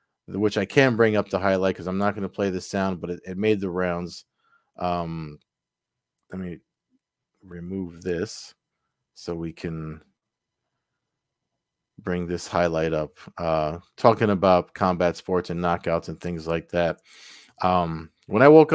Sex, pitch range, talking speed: male, 85-110 Hz, 155 wpm